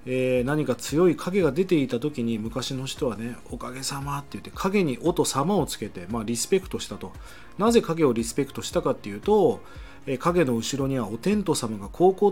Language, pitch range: Japanese, 120-185 Hz